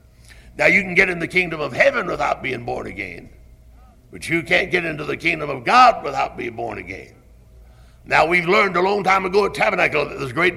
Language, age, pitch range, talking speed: English, 60-79, 145-210 Hz, 220 wpm